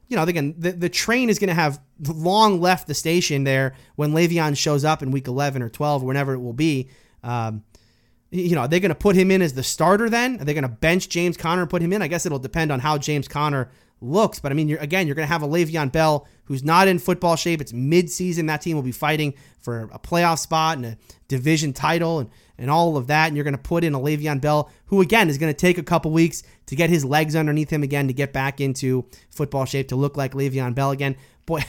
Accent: American